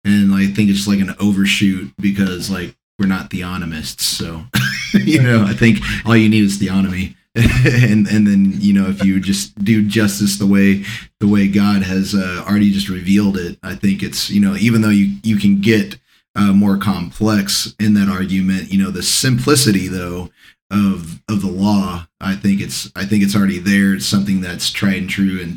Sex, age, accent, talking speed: male, 30-49, American, 195 wpm